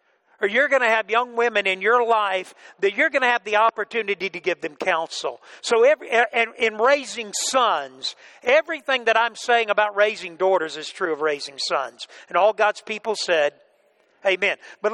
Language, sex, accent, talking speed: English, male, American, 190 wpm